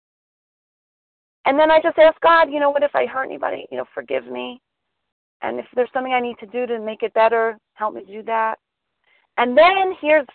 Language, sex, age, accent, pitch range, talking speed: English, female, 40-59, American, 175-285 Hz, 210 wpm